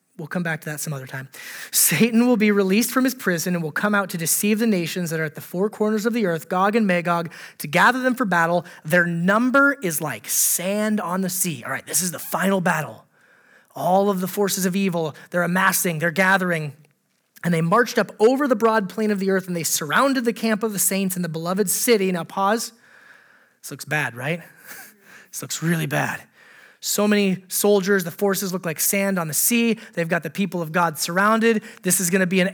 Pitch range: 170-215 Hz